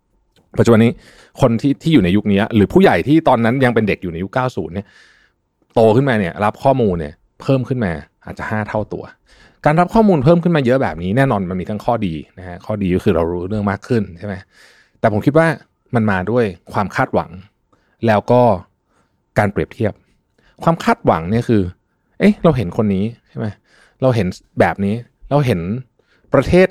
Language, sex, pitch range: Thai, male, 100-135 Hz